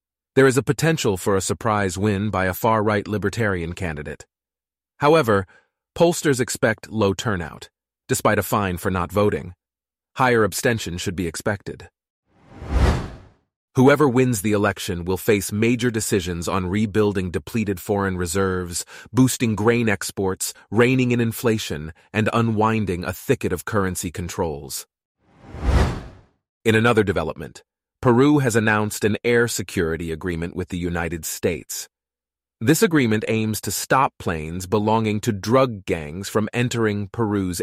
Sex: male